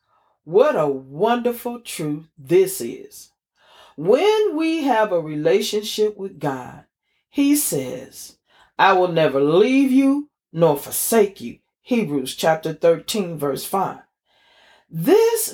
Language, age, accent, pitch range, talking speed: English, 40-59, American, 180-280 Hz, 110 wpm